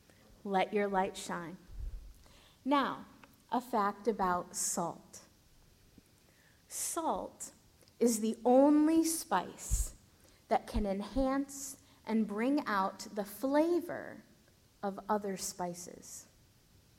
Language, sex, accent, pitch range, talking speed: English, female, American, 200-245 Hz, 90 wpm